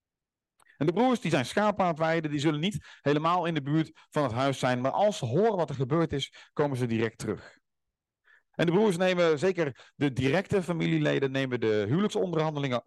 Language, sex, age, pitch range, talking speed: Dutch, male, 40-59, 130-165 Hz, 195 wpm